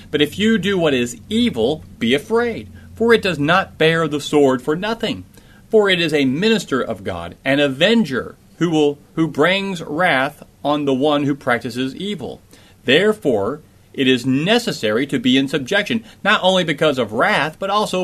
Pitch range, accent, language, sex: 135-200 Hz, American, English, male